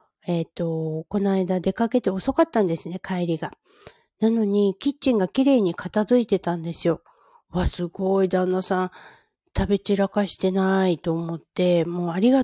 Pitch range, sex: 170-210 Hz, female